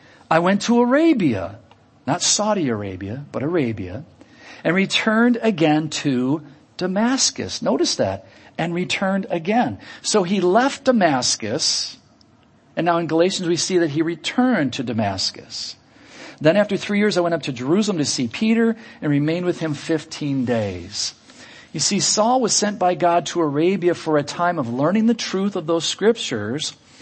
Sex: male